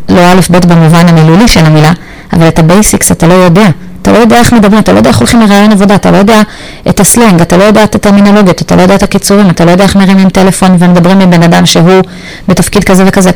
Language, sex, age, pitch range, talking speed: Hebrew, female, 30-49, 155-185 Hz, 245 wpm